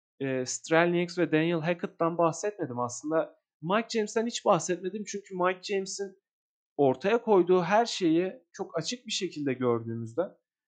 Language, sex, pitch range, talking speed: Turkish, male, 165-215 Hz, 125 wpm